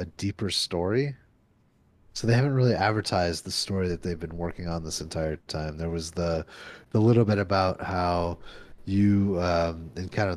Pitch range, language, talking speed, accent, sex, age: 85-100 Hz, English, 170 wpm, American, male, 30-49